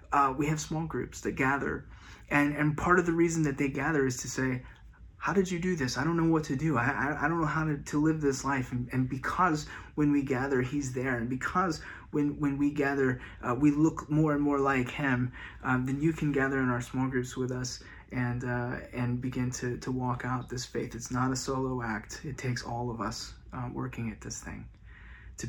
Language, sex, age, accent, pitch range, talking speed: English, male, 30-49, American, 120-145 Hz, 235 wpm